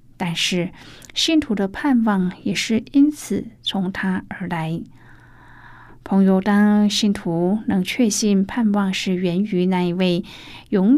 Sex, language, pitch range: female, Chinese, 175-230 Hz